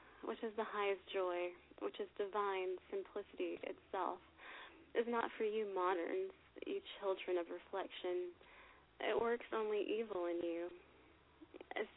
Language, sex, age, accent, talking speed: English, female, 30-49, American, 130 wpm